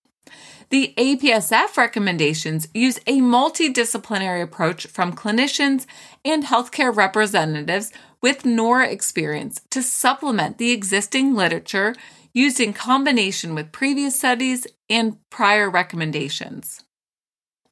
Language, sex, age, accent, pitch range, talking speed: English, female, 30-49, American, 195-260 Hz, 100 wpm